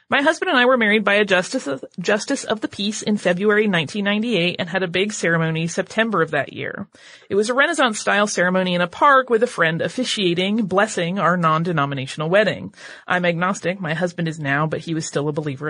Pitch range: 175-235 Hz